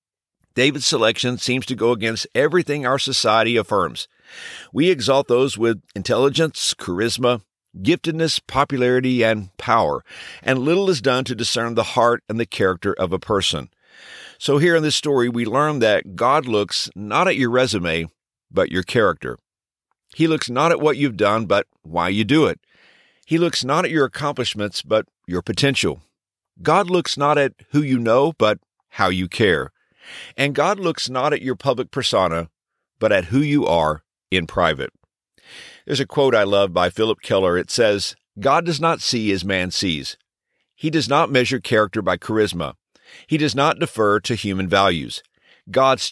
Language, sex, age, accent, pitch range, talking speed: English, male, 50-69, American, 105-145 Hz, 170 wpm